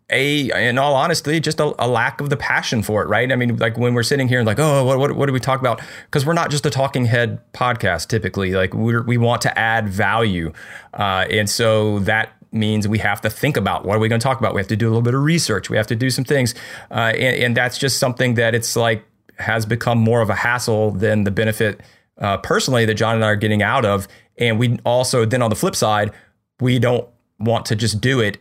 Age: 30-49